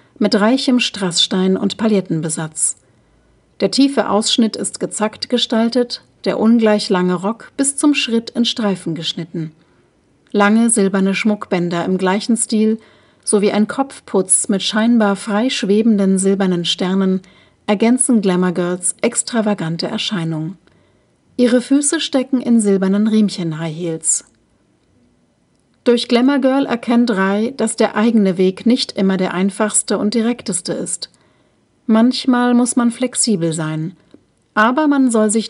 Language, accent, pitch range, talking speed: German, German, 185-235 Hz, 125 wpm